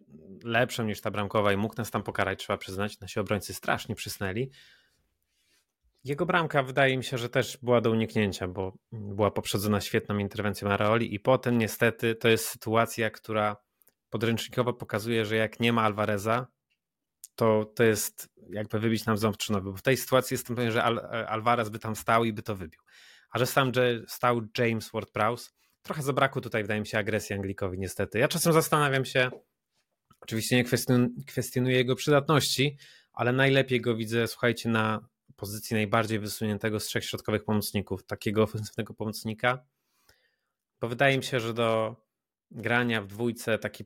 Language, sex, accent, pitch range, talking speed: Polish, male, native, 105-120 Hz, 160 wpm